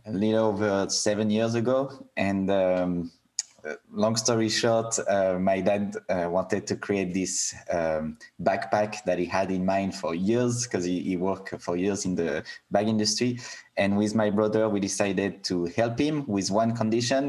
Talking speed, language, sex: 175 wpm, English, male